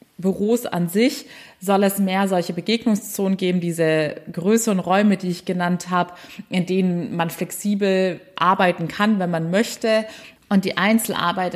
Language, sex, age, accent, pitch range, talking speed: German, female, 20-39, German, 175-205 Hz, 150 wpm